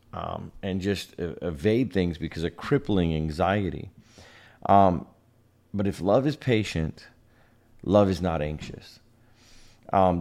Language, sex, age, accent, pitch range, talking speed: English, male, 40-59, American, 85-115 Hz, 120 wpm